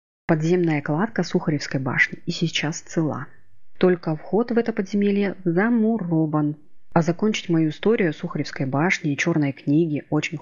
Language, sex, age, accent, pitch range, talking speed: Russian, female, 30-49, native, 145-180 Hz, 140 wpm